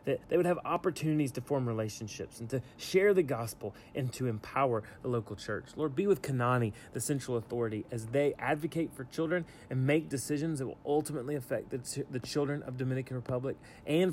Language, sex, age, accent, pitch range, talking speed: English, male, 30-49, American, 120-155 Hz, 190 wpm